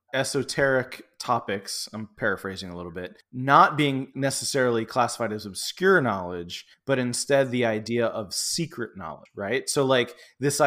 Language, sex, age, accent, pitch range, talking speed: English, male, 20-39, American, 115-145 Hz, 140 wpm